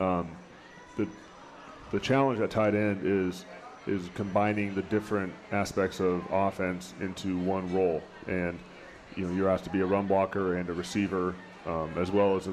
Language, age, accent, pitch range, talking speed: English, 30-49, American, 90-105 Hz, 170 wpm